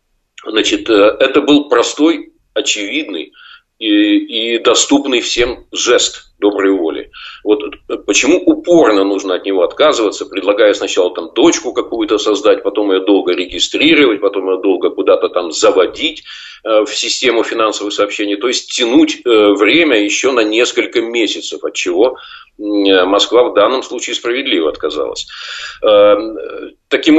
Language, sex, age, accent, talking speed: Russian, male, 40-59, native, 125 wpm